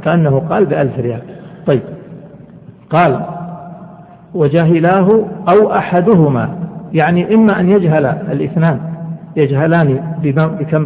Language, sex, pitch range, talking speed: Arabic, male, 145-175 Hz, 90 wpm